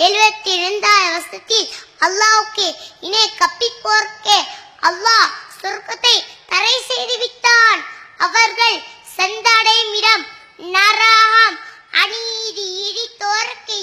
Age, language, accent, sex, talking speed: 20-39, English, Indian, male, 80 wpm